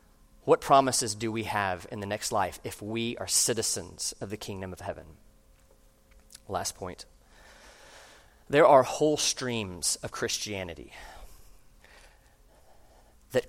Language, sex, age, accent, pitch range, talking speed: English, male, 30-49, American, 125-175 Hz, 120 wpm